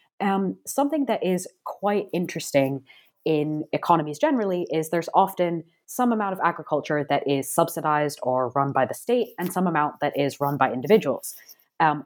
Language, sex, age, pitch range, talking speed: English, female, 20-39, 150-195 Hz, 165 wpm